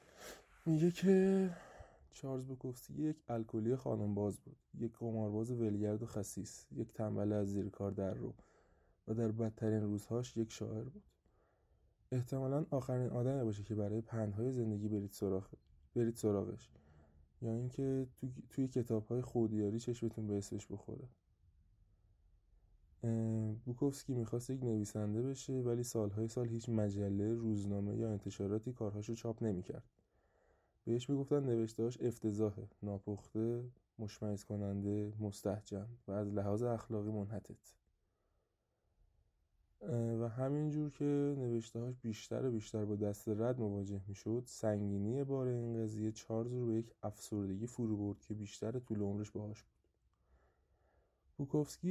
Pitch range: 105-125 Hz